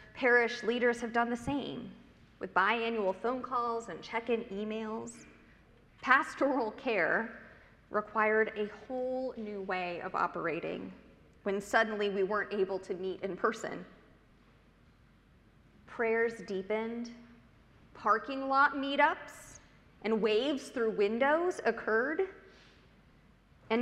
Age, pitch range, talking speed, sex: 30-49, 215-270 Hz, 105 wpm, female